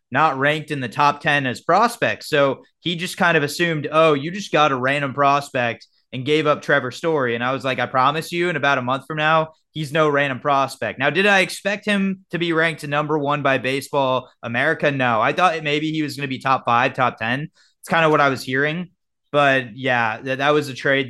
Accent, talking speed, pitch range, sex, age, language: American, 235 wpm, 130-155 Hz, male, 20-39, English